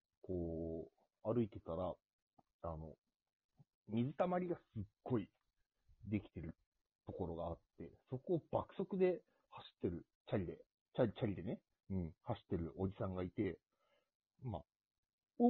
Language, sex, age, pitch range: Japanese, male, 40-59, 90-140 Hz